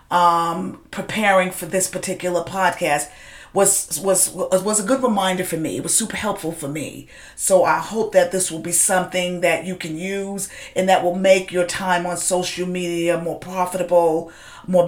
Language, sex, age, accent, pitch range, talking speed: English, female, 40-59, American, 170-190 Hz, 180 wpm